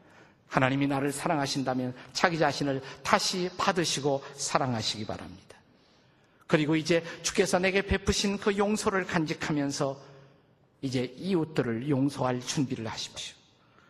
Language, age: Korean, 50-69